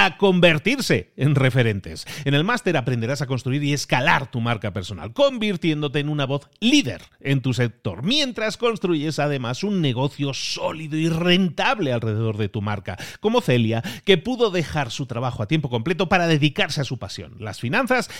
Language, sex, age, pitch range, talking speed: Spanish, male, 40-59, 130-190 Hz, 170 wpm